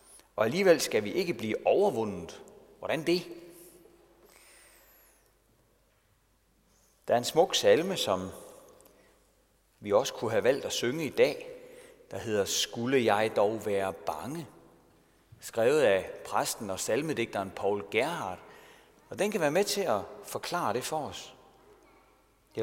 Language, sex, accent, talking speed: Danish, male, native, 135 wpm